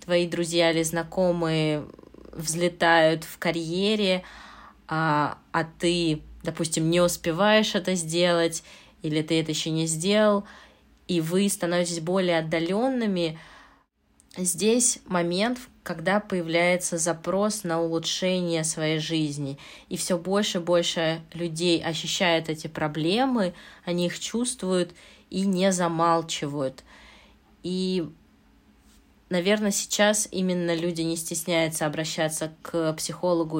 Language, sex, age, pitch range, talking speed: Russian, female, 20-39, 160-180 Hz, 105 wpm